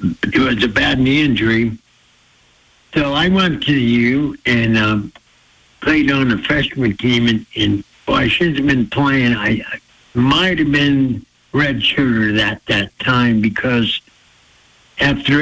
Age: 60-79